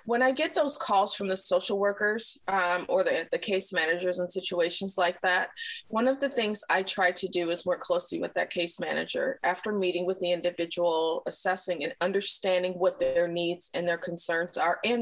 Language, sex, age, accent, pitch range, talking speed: English, female, 30-49, American, 180-225 Hz, 200 wpm